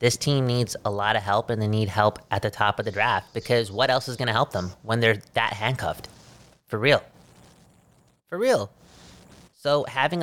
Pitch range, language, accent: 105-125 Hz, English, American